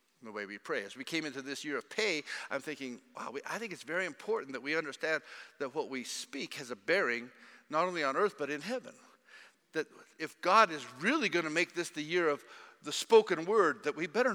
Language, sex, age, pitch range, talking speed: English, male, 50-69, 170-255 Hz, 230 wpm